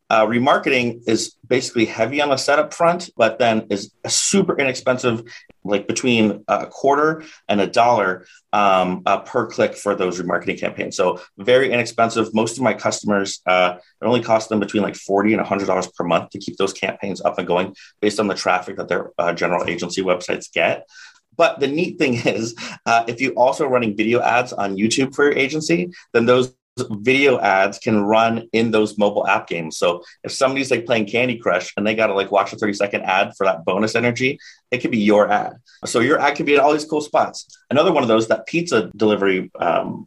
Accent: American